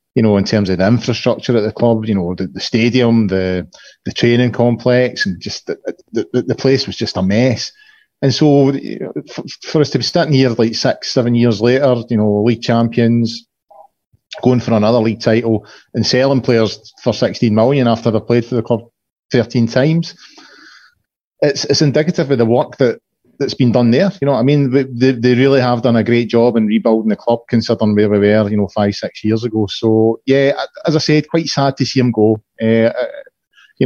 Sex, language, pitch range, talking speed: male, English, 110-125 Hz, 205 wpm